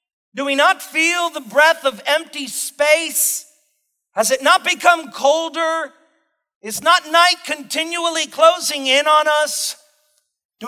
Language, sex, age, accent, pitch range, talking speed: English, male, 40-59, American, 245-300 Hz, 130 wpm